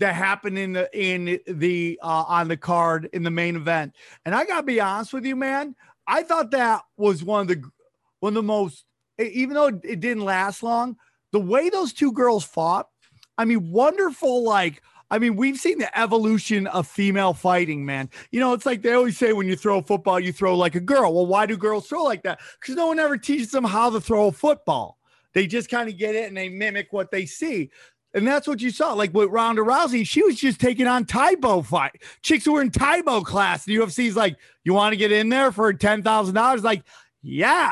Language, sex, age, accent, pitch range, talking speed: English, male, 30-49, American, 195-245 Hz, 225 wpm